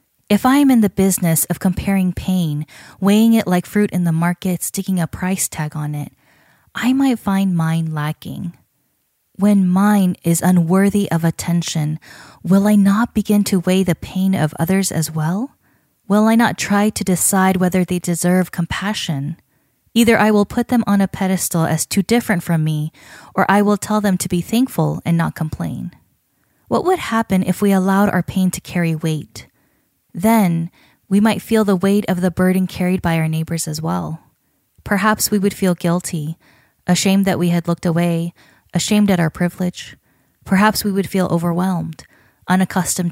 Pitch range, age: 165-200 Hz, 10-29